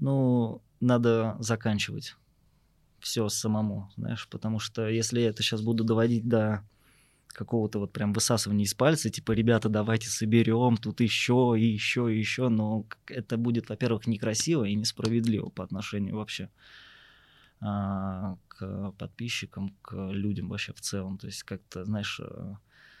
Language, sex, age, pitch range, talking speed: Russian, male, 20-39, 100-115 Hz, 135 wpm